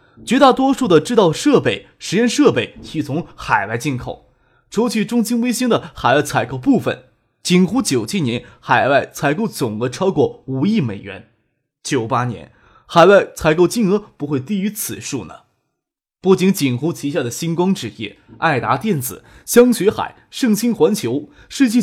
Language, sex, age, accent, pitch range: Chinese, male, 20-39, native, 130-210 Hz